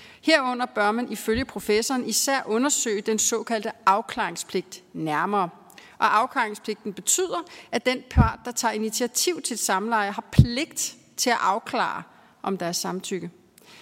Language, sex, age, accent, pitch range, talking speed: Danish, female, 40-59, native, 205-250 Hz, 135 wpm